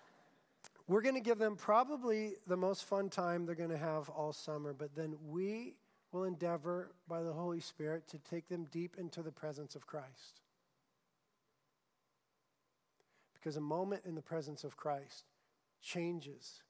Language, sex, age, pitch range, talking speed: English, male, 40-59, 155-195 Hz, 155 wpm